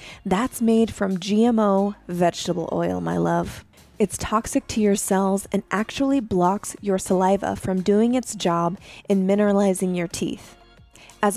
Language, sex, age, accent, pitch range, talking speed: English, female, 20-39, American, 185-220 Hz, 145 wpm